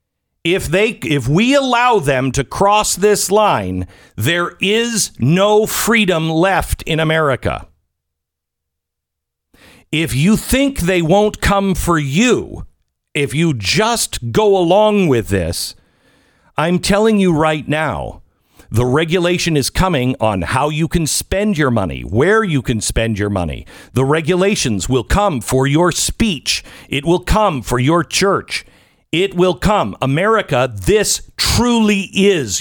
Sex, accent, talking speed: male, American, 135 wpm